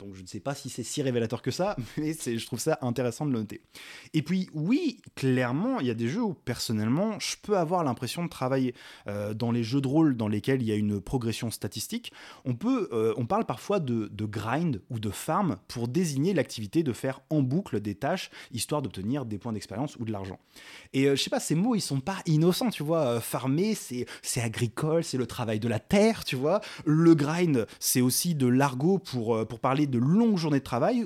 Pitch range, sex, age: 115-160 Hz, male, 20-39